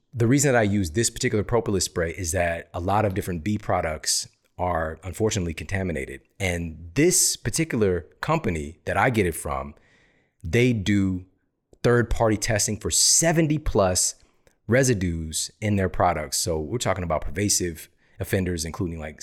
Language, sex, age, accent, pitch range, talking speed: English, male, 30-49, American, 85-115 Hz, 150 wpm